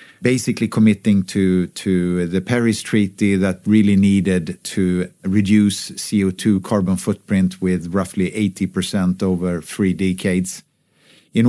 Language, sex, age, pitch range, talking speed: English, male, 50-69, 95-110 Hz, 115 wpm